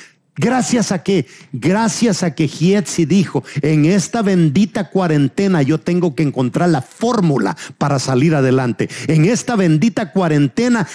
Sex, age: male, 50-69